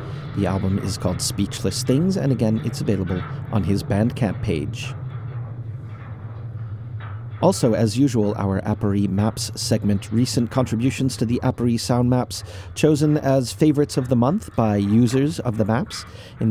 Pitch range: 105-130 Hz